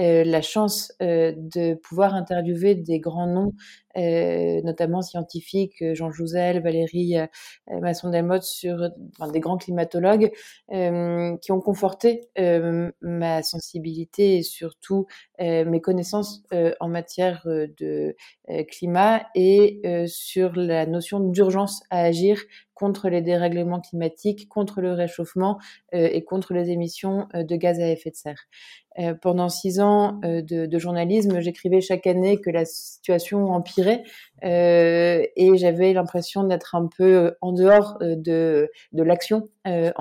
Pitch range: 170-190 Hz